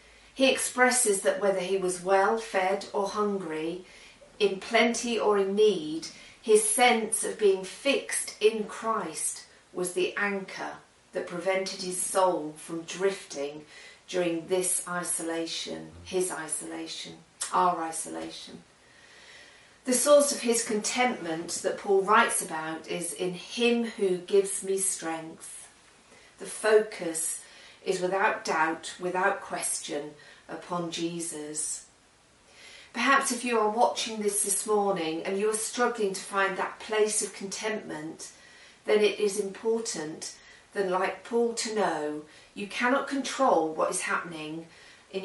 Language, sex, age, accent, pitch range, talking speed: English, female, 40-59, British, 165-215 Hz, 130 wpm